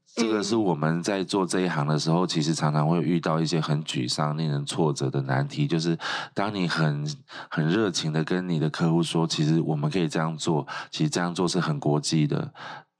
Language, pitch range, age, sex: Chinese, 75-85 Hz, 20-39, male